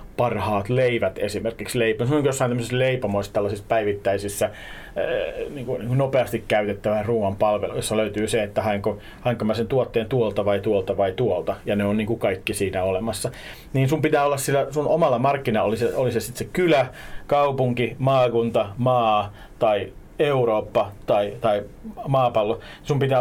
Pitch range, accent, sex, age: 105-135 Hz, native, male, 40-59